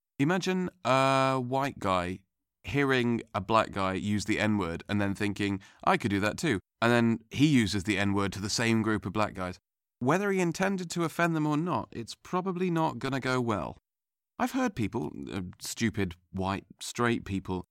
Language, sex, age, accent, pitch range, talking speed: English, male, 30-49, British, 100-125 Hz, 185 wpm